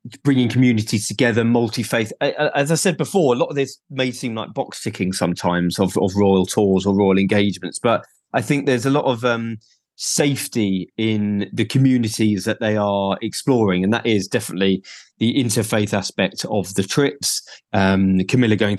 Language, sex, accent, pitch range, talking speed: English, male, British, 105-125 Hz, 170 wpm